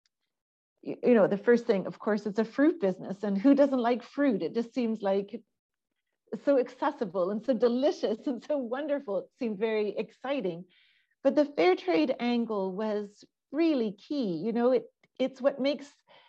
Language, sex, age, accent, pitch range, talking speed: English, female, 40-59, American, 190-255 Hz, 170 wpm